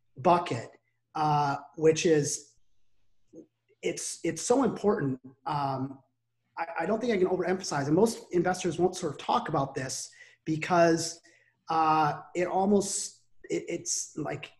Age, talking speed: 30-49, 125 wpm